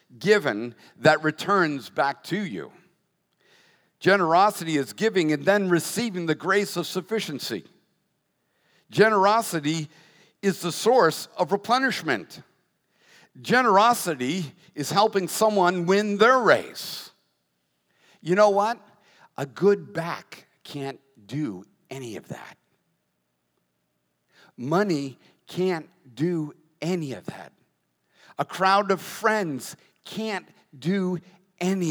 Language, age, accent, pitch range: English, 50-69, American, 115-180 Hz